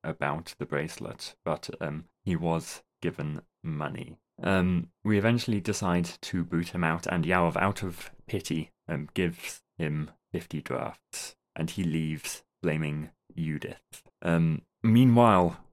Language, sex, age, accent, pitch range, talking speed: English, male, 20-39, British, 80-100 Hz, 130 wpm